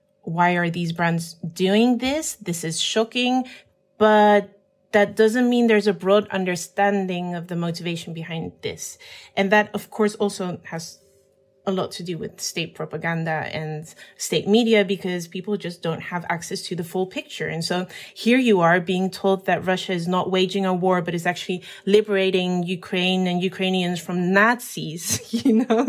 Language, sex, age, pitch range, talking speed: English, female, 30-49, 180-215 Hz, 170 wpm